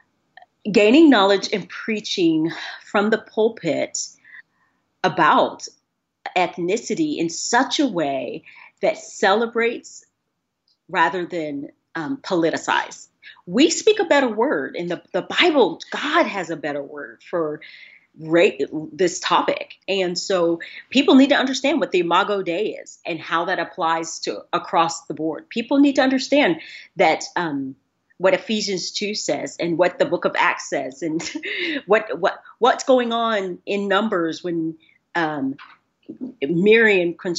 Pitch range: 175-285 Hz